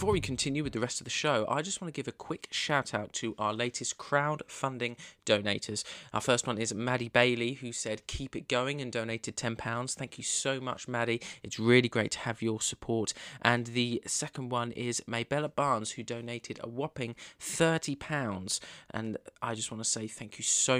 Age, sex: 20-39, male